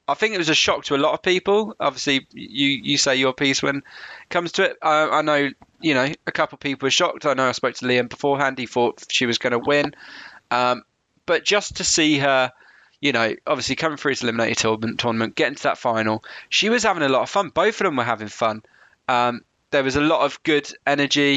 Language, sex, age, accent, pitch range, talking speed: English, male, 20-39, British, 125-155 Hz, 245 wpm